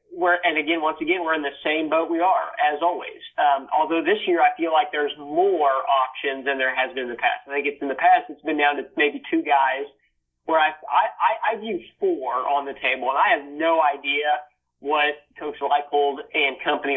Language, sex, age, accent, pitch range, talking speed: English, male, 30-49, American, 135-165 Hz, 225 wpm